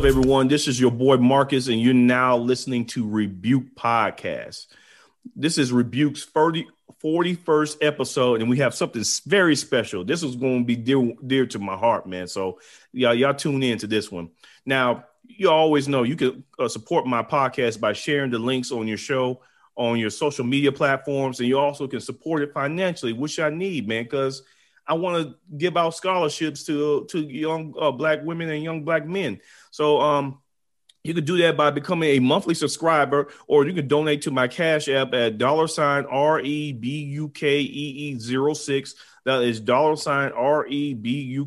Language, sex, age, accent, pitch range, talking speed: English, male, 40-59, American, 125-150 Hz, 190 wpm